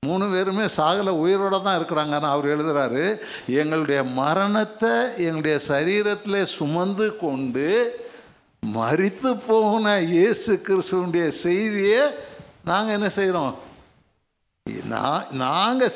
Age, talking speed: 60-79, 85 wpm